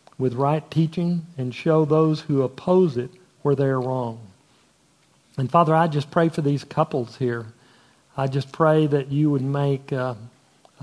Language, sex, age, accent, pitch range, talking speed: English, male, 50-69, American, 130-150 Hz, 165 wpm